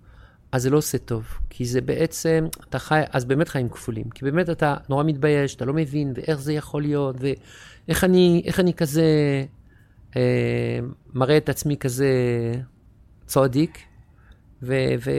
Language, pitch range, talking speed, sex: Hebrew, 120-155 Hz, 150 wpm, male